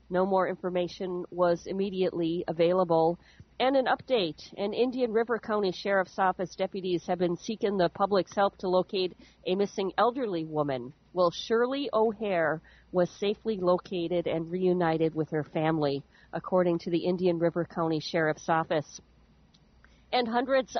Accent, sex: American, female